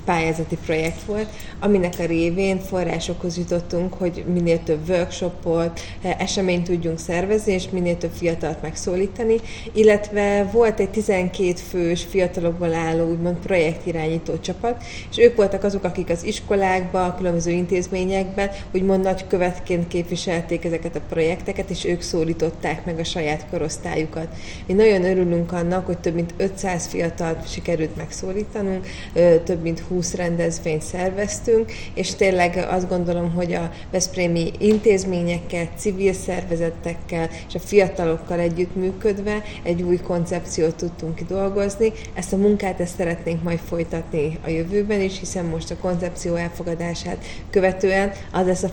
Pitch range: 170-190 Hz